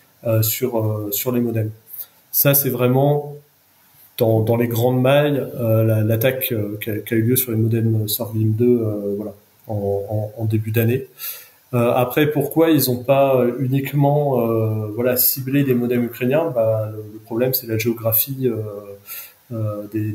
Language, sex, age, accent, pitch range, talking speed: French, male, 30-49, French, 110-130 Hz, 165 wpm